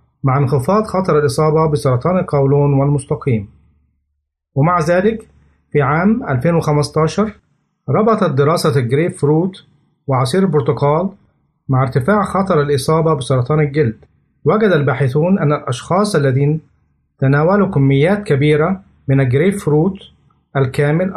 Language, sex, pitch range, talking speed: Arabic, male, 140-175 Hz, 100 wpm